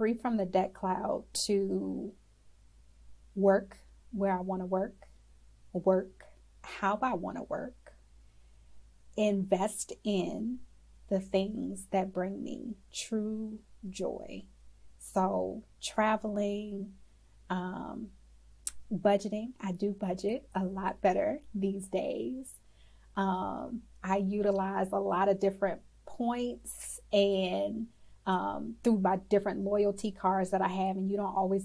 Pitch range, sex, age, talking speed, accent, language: 185-210 Hz, female, 30-49, 115 wpm, American, English